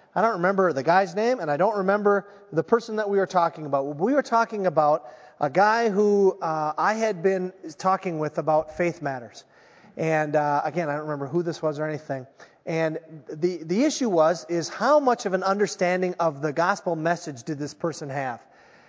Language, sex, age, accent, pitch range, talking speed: English, male, 30-49, American, 160-210 Hz, 200 wpm